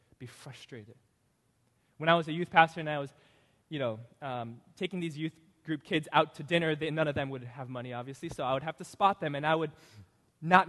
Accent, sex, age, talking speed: American, male, 20-39, 225 wpm